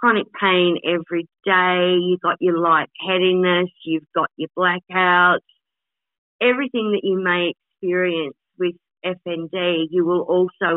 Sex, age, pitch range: female, 40-59, 170-195 Hz